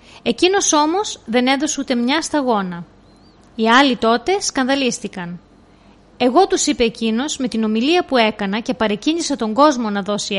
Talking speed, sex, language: 150 wpm, female, Greek